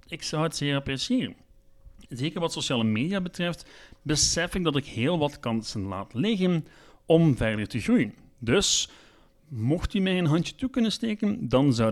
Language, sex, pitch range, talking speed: Dutch, male, 120-175 Hz, 170 wpm